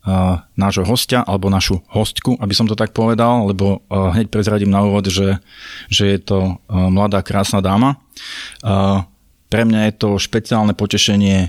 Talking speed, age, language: 145 wpm, 20-39, Slovak